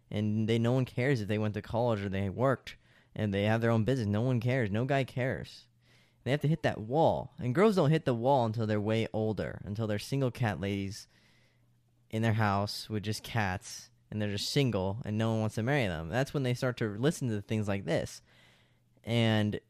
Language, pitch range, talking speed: English, 105-130 Hz, 225 wpm